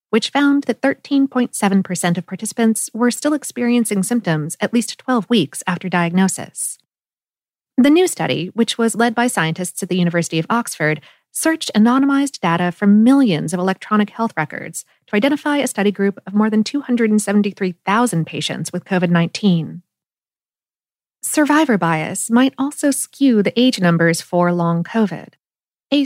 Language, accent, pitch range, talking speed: English, American, 180-245 Hz, 145 wpm